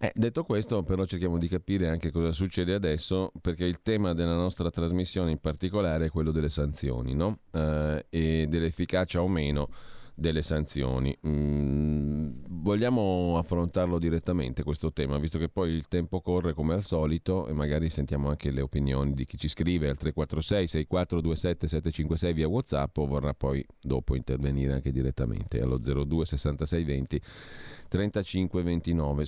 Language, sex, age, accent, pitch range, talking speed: Italian, male, 40-59, native, 75-90 Hz, 150 wpm